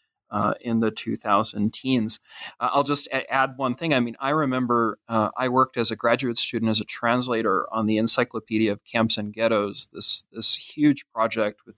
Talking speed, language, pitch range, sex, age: 195 wpm, English, 110-135 Hz, male, 30-49